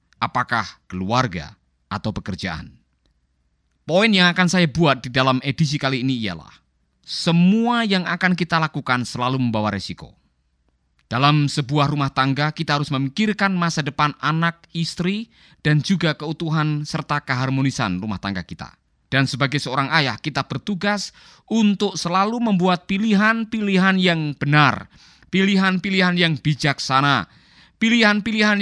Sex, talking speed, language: male, 120 wpm, Indonesian